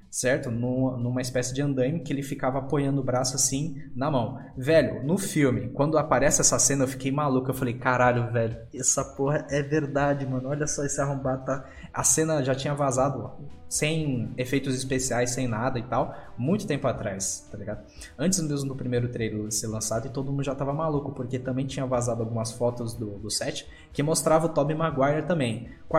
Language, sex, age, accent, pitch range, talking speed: Portuguese, male, 20-39, Brazilian, 120-150 Hz, 195 wpm